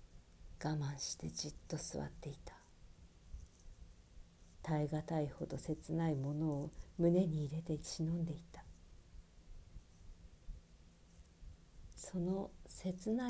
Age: 50-69